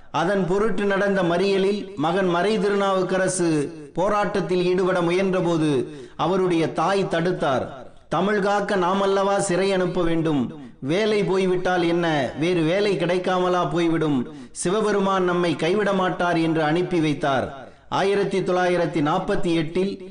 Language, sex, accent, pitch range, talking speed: Tamil, male, native, 165-195 Hz, 100 wpm